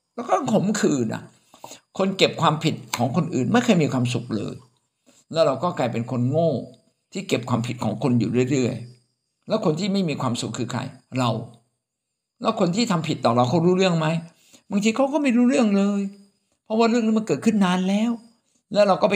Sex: male